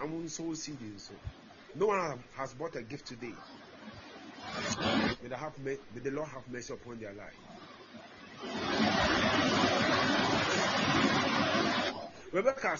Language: Japanese